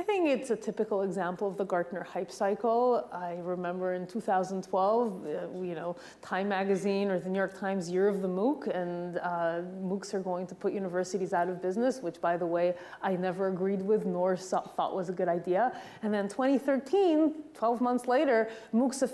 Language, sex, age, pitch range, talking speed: English, female, 30-49, 180-220 Hz, 200 wpm